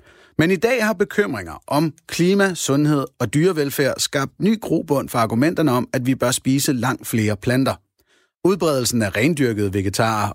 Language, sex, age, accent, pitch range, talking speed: Danish, male, 30-49, native, 115-160 Hz, 155 wpm